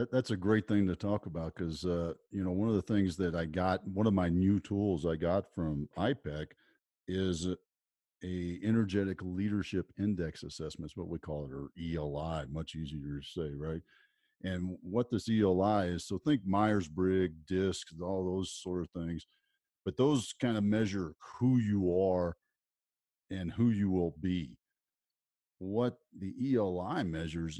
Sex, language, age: male, English, 50-69